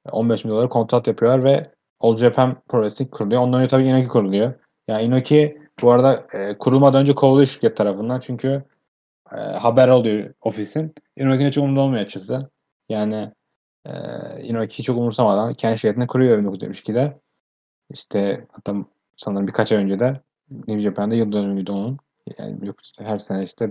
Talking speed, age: 145 wpm, 30-49